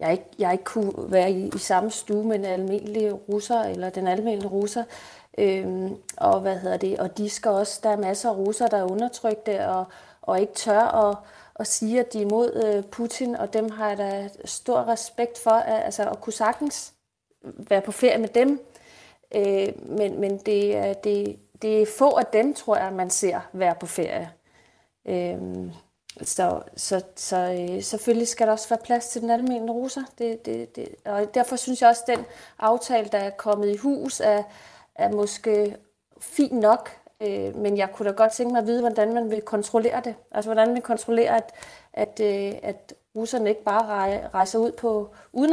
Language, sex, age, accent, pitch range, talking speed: Danish, female, 30-49, native, 200-230 Hz, 200 wpm